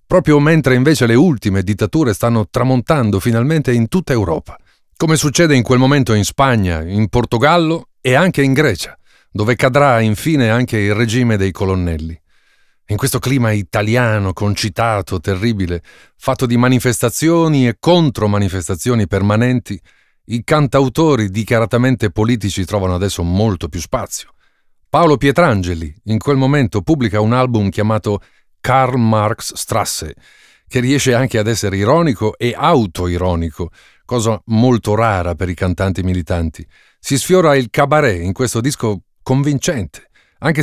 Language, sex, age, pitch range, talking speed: Italian, male, 40-59, 100-130 Hz, 135 wpm